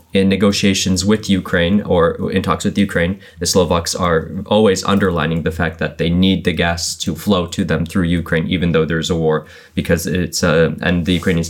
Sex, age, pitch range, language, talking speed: male, 20-39, 80-100 Hz, English, 200 wpm